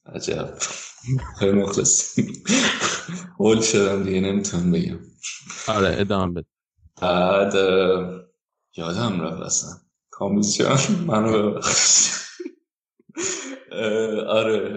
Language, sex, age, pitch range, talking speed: Persian, male, 20-39, 95-120 Hz, 75 wpm